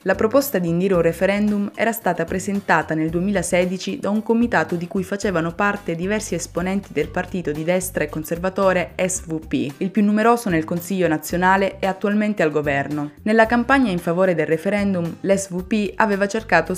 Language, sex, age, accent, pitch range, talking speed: Italian, female, 20-39, native, 160-200 Hz, 165 wpm